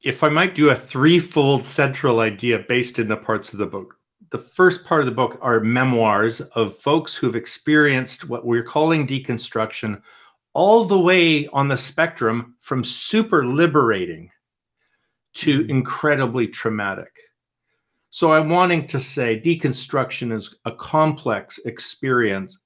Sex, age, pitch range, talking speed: male, 50-69, 120-155 Hz, 140 wpm